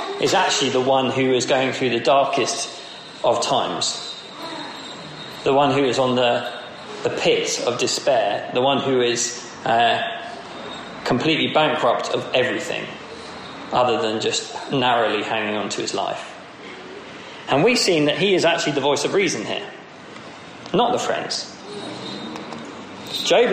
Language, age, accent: English, 40-59, British